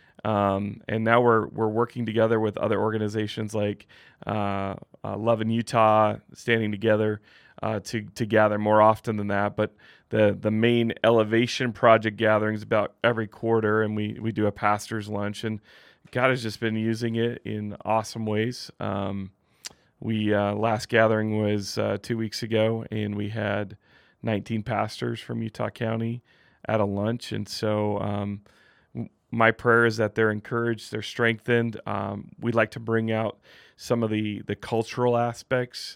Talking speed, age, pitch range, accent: 160 wpm, 30-49, 105-120 Hz, American